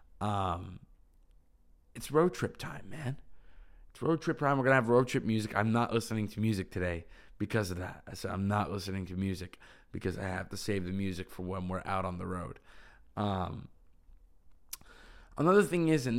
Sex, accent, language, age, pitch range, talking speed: male, American, English, 20-39, 95-125 Hz, 195 wpm